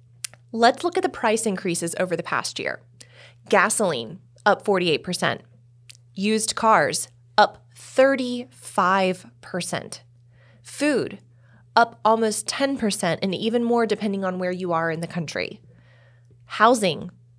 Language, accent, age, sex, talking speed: English, American, 20-39, female, 115 wpm